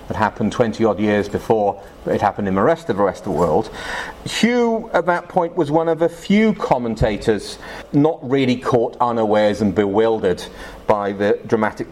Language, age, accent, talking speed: English, 40-59, British, 170 wpm